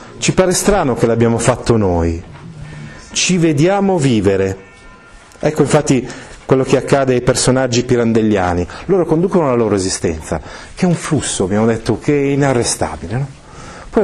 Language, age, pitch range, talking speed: Italian, 40-59, 105-145 Hz, 140 wpm